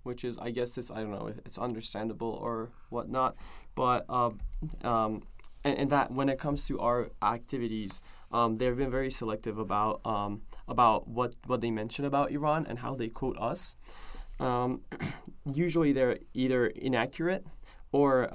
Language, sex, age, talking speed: English, male, 20-39, 165 wpm